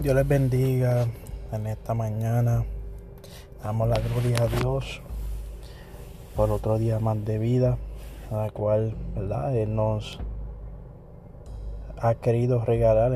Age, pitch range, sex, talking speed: 20-39, 110-130 Hz, male, 120 wpm